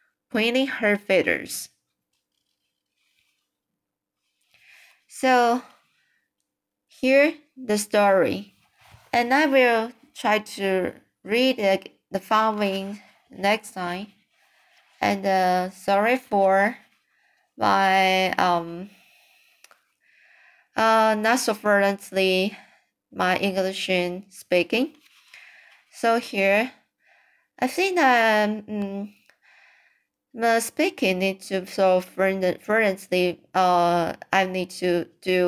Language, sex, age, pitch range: Chinese, female, 20-39, 190-240 Hz